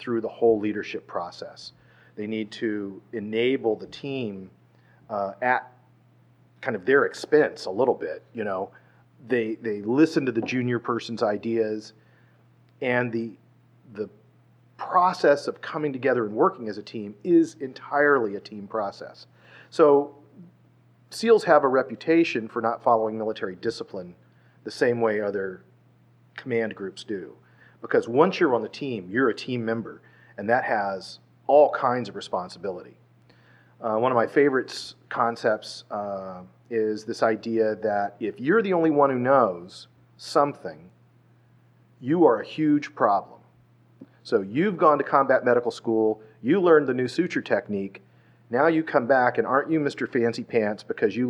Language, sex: English, male